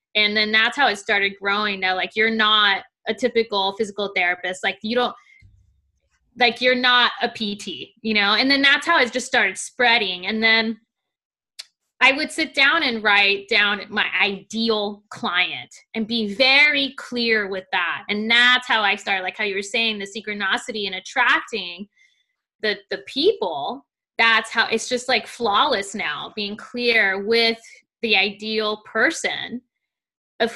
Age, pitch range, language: 20-39, 200-245 Hz, English